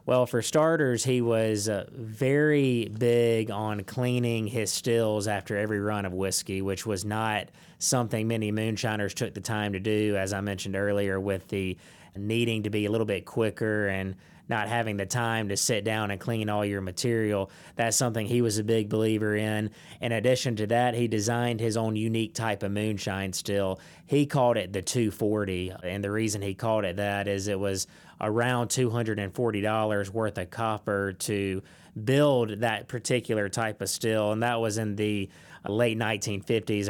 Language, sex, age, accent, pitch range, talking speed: English, male, 20-39, American, 100-115 Hz, 175 wpm